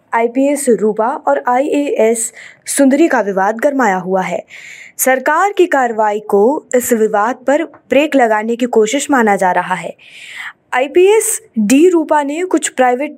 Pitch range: 220-290 Hz